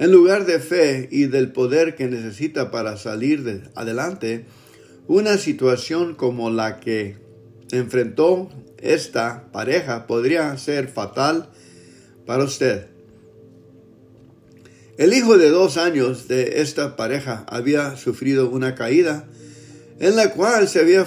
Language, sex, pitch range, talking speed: English, male, 125-165 Hz, 120 wpm